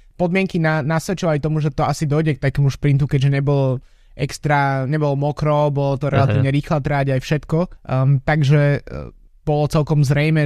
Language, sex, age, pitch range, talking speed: Slovak, male, 20-39, 135-150 Hz, 165 wpm